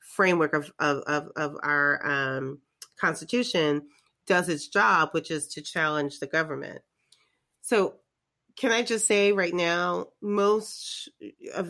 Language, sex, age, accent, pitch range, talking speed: English, female, 30-49, American, 150-195 Hz, 125 wpm